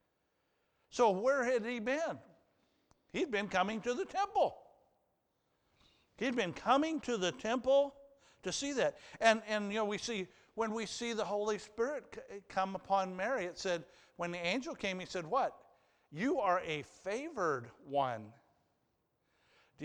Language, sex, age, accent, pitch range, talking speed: English, male, 50-69, American, 160-235 Hz, 150 wpm